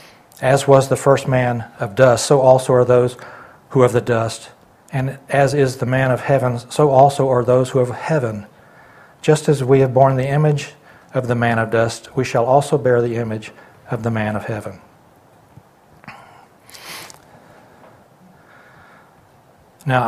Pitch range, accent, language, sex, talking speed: 120-145 Hz, American, English, male, 160 wpm